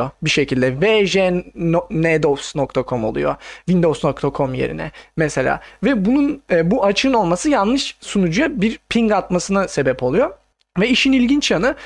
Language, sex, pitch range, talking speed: Turkish, male, 155-225 Hz, 120 wpm